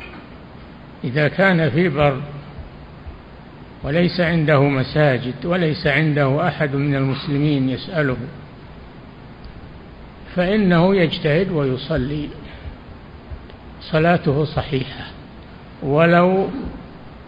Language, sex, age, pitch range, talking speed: Arabic, male, 60-79, 135-175 Hz, 65 wpm